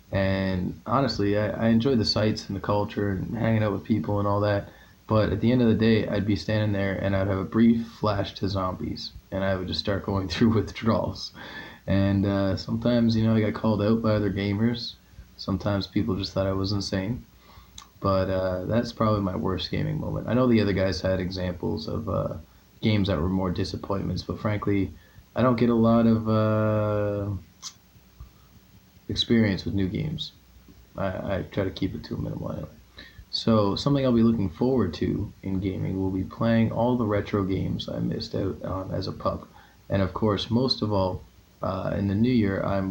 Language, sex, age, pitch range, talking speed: English, male, 20-39, 95-110 Hz, 200 wpm